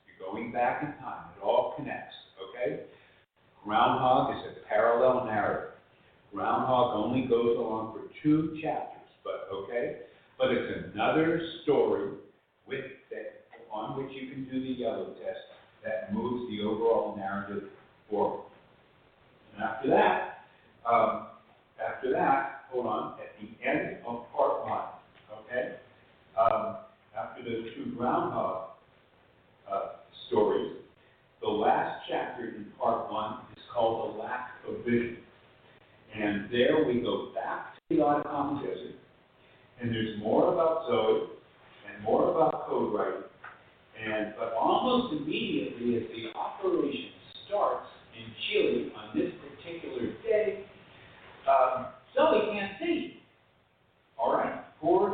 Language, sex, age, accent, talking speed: English, male, 50-69, American, 120 wpm